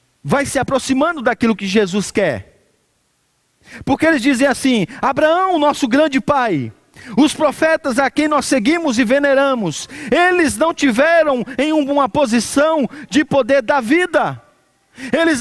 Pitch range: 245-295 Hz